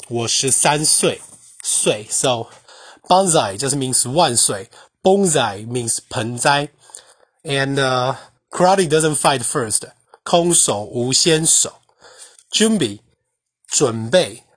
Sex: male